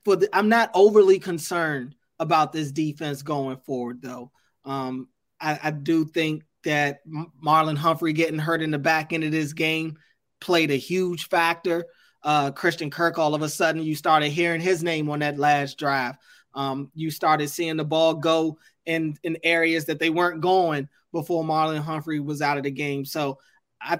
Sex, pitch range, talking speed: male, 155-185 Hz, 180 wpm